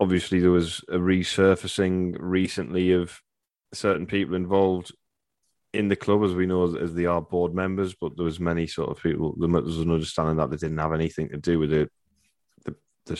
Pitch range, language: 75-90 Hz, English